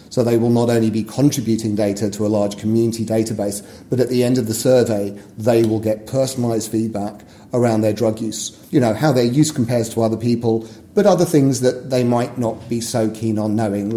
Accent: British